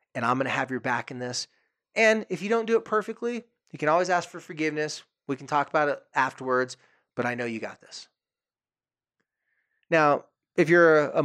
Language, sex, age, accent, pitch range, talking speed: English, male, 30-49, American, 130-175 Hz, 205 wpm